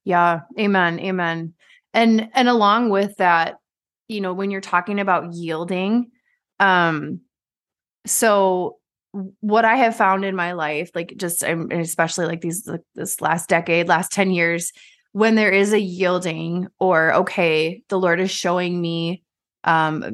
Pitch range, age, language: 175-220 Hz, 20-39, English